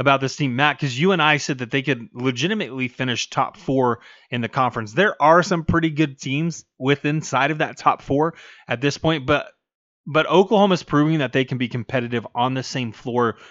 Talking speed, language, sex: 215 wpm, English, male